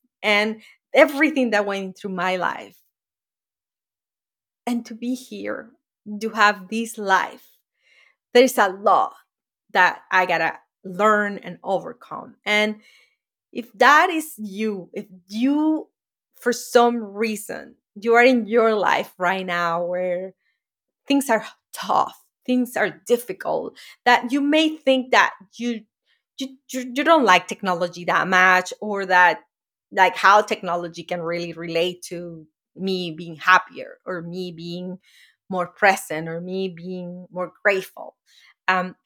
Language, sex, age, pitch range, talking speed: English, female, 30-49, 180-235 Hz, 130 wpm